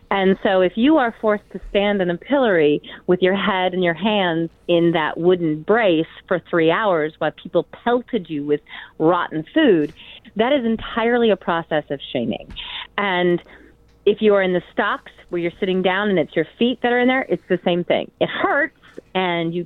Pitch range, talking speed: 165-215 Hz, 200 wpm